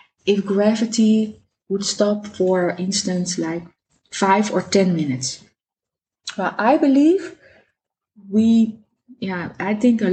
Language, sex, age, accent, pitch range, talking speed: English, female, 20-39, Dutch, 190-225 Hz, 115 wpm